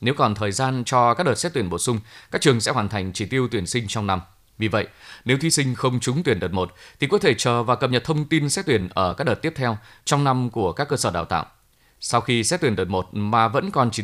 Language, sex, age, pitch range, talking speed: Vietnamese, male, 20-39, 105-135 Hz, 280 wpm